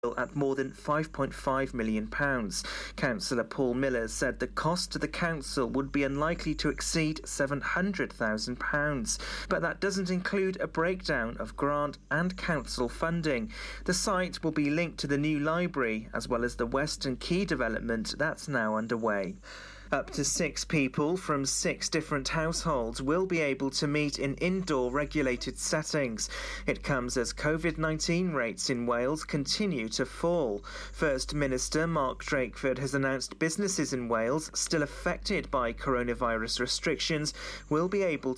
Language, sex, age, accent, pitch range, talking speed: English, male, 40-59, British, 130-170 Hz, 145 wpm